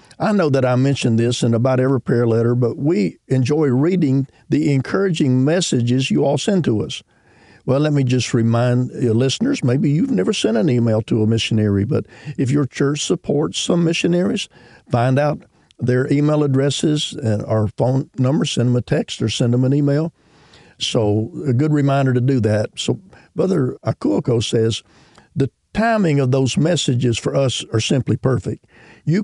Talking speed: 170 wpm